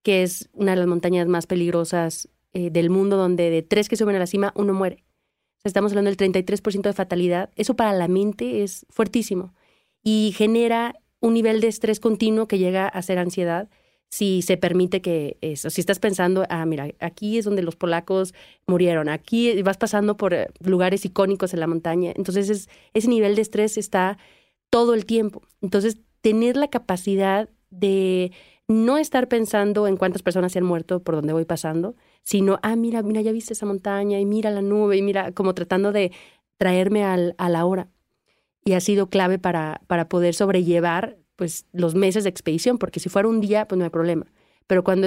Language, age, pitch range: Spanish, 30-49, 175-210 Hz